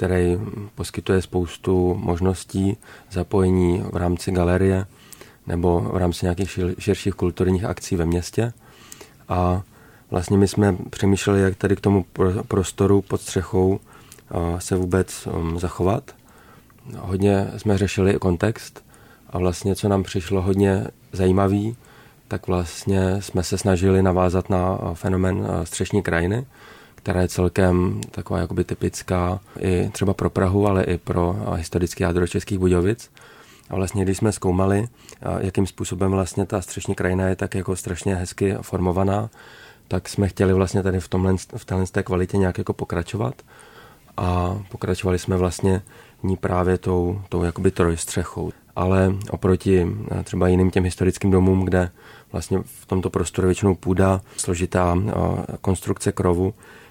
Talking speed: 135 wpm